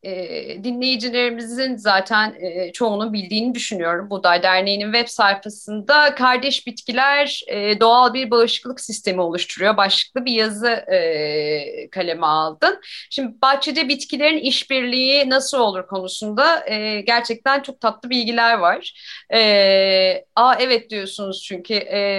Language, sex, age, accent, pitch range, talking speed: Turkish, female, 30-49, native, 195-250 Hz, 100 wpm